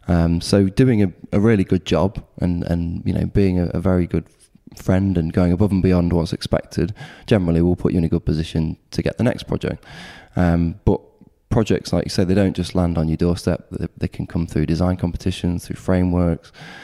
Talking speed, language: 215 wpm, English